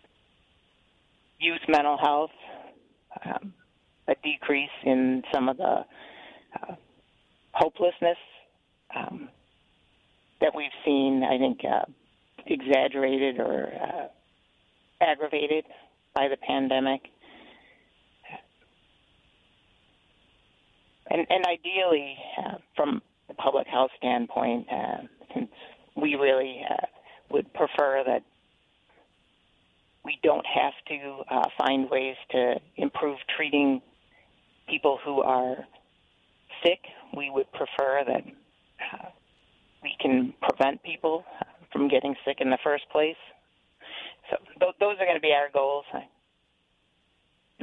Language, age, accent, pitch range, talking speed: English, 40-59, American, 130-170 Hz, 105 wpm